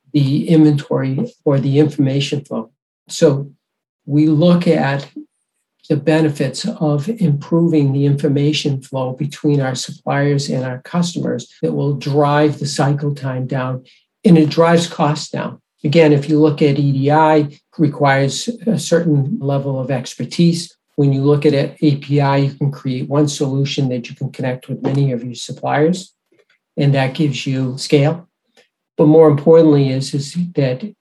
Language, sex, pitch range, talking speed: English, male, 140-155 Hz, 150 wpm